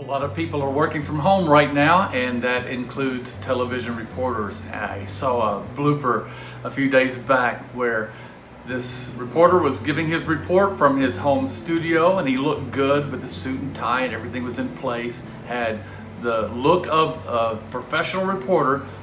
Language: English